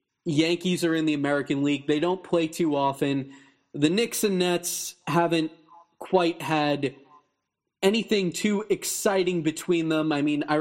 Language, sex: English, male